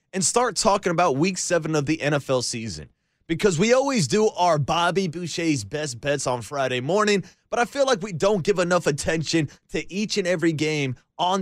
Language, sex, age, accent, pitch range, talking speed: English, male, 30-49, American, 150-180 Hz, 195 wpm